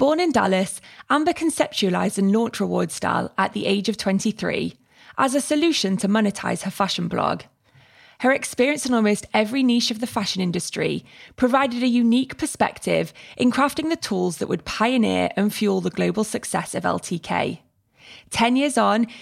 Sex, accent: female, British